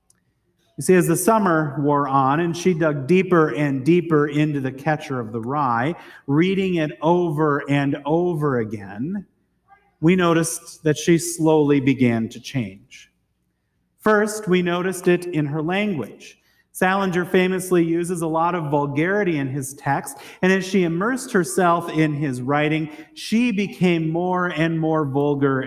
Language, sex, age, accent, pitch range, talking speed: English, male, 40-59, American, 145-180 Hz, 150 wpm